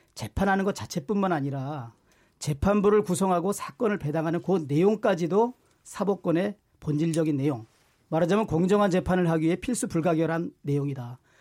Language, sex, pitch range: Korean, male, 155-215 Hz